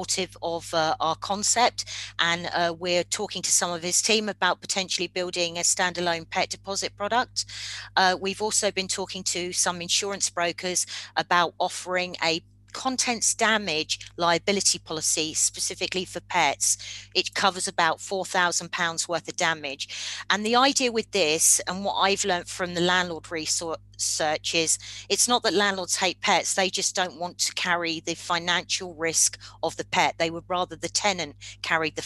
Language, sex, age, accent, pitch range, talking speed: English, female, 40-59, British, 165-190 Hz, 160 wpm